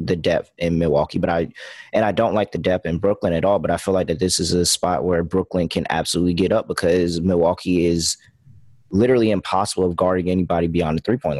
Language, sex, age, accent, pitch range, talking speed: English, male, 20-39, American, 85-100 Hz, 225 wpm